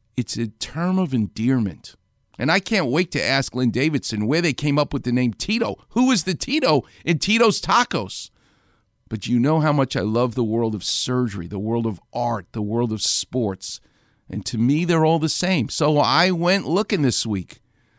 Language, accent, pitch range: English, American, 110-175 Hz